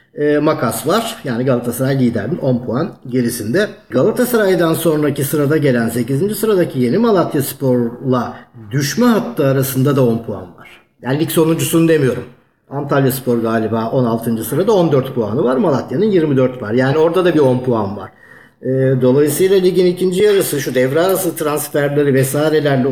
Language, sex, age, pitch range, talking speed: Turkish, male, 50-69, 130-165 Hz, 140 wpm